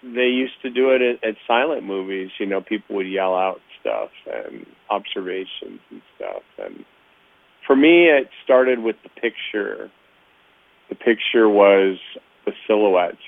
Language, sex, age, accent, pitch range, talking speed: English, male, 40-59, American, 90-115 Hz, 150 wpm